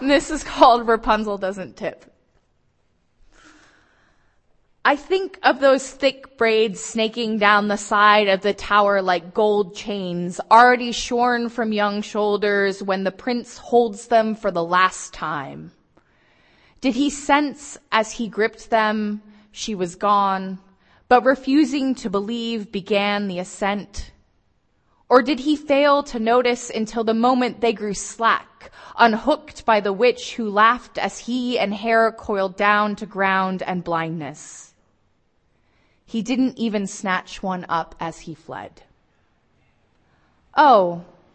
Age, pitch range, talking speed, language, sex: 20-39, 190-240 Hz, 135 wpm, English, female